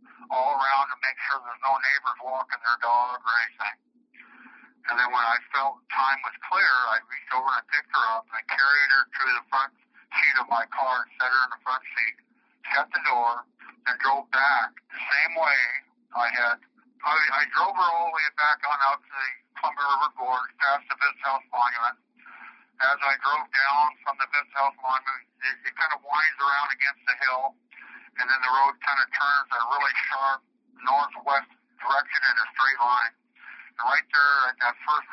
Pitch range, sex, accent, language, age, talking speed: 130-155 Hz, male, American, English, 50-69, 200 wpm